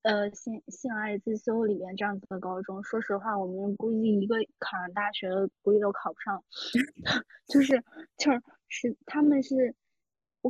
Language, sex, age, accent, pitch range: Chinese, female, 20-39, native, 210-260 Hz